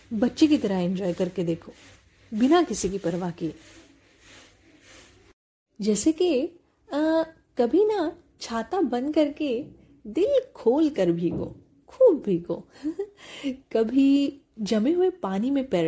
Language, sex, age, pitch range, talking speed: Hindi, female, 10-29, 185-280 Hz, 115 wpm